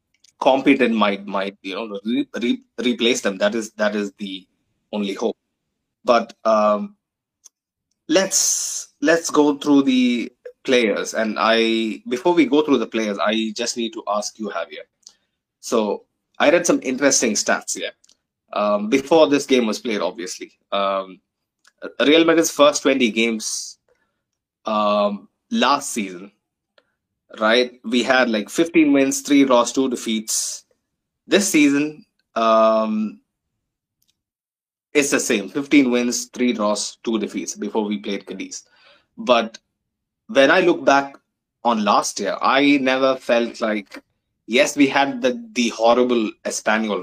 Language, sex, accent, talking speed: English, male, Indian, 135 wpm